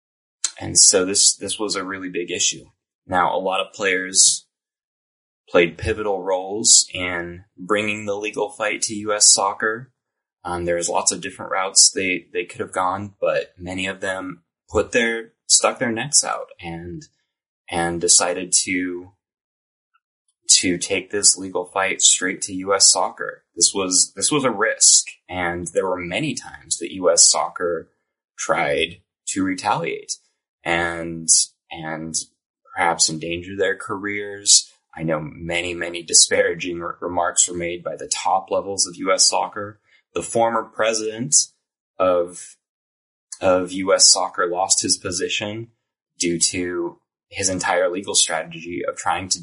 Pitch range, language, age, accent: 85-110 Hz, English, 20-39, American